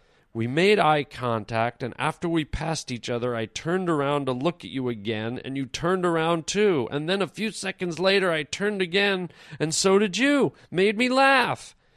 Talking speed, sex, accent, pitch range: 195 wpm, male, American, 120-165 Hz